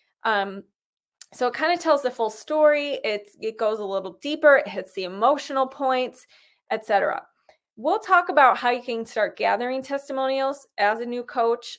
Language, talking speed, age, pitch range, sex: English, 175 wpm, 20-39, 205-265 Hz, female